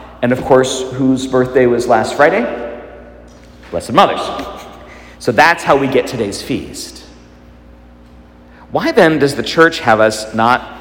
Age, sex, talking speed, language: 50-69, male, 140 wpm, English